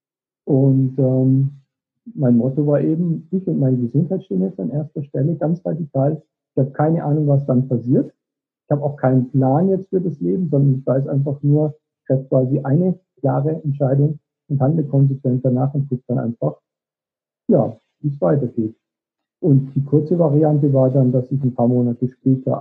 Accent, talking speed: German, 180 wpm